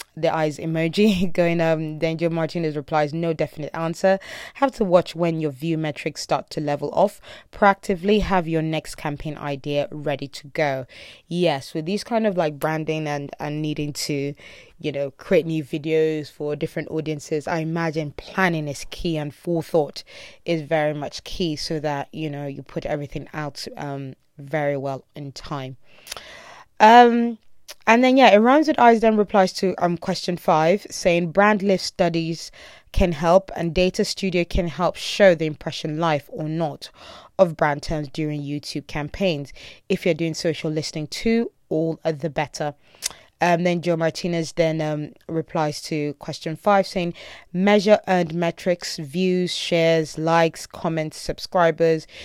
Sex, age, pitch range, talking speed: female, 20-39, 155-180 Hz, 160 wpm